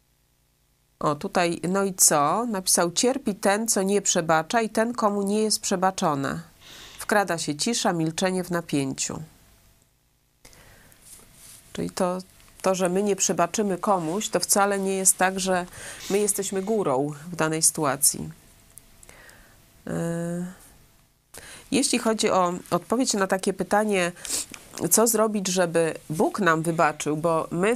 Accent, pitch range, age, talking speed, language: native, 160-200 Hz, 30-49, 125 wpm, Polish